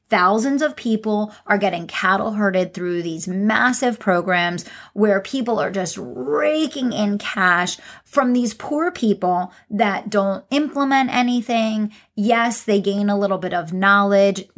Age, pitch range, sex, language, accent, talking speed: 30-49, 185-230 Hz, female, English, American, 140 wpm